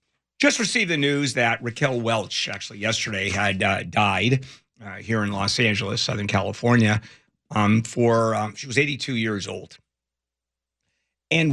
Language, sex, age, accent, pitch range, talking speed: English, male, 50-69, American, 105-135 Hz, 145 wpm